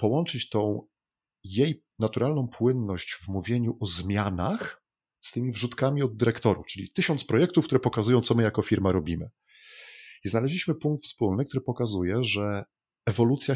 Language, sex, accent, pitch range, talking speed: Polish, male, native, 100-125 Hz, 140 wpm